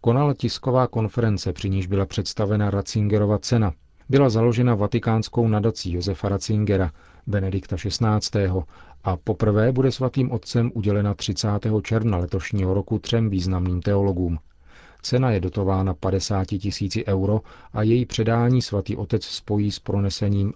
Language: Czech